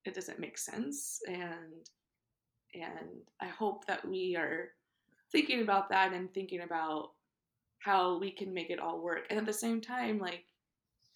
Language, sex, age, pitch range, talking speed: English, female, 20-39, 175-210 Hz, 160 wpm